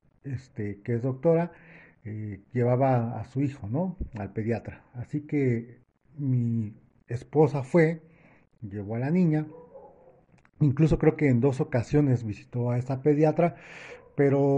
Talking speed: 130 wpm